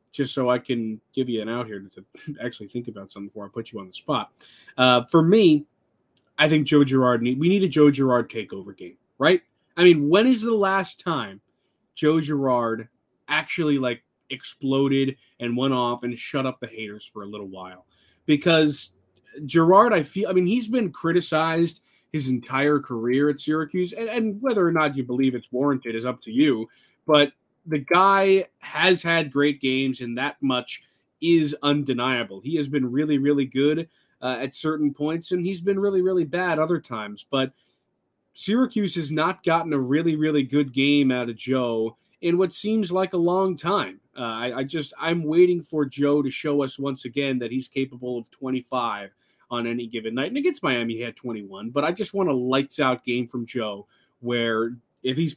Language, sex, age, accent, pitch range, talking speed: English, male, 20-39, American, 120-165 Hz, 195 wpm